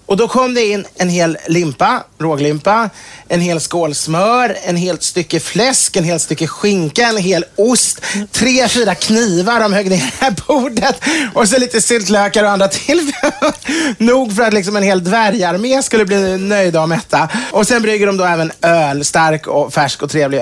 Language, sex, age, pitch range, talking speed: English, male, 30-49, 140-205 Hz, 175 wpm